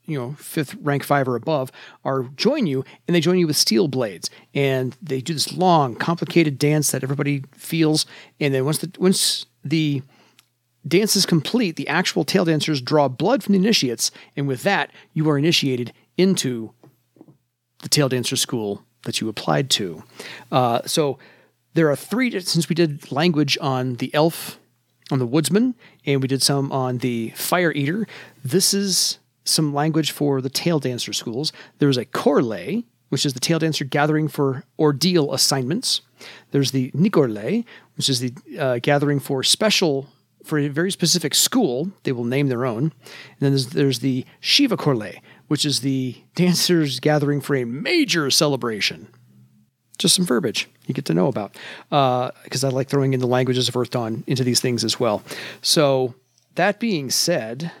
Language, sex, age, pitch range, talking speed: English, male, 40-59, 130-165 Hz, 175 wpm